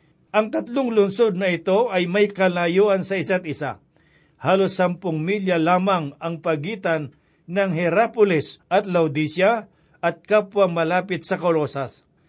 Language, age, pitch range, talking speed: Filipino, 50-69, 165-200 Hz, 125 wpm